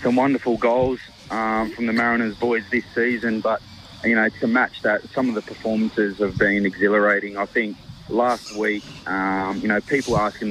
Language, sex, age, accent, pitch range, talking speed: English, male, 30-49, Australian, 100-115 Hz, 185 wpm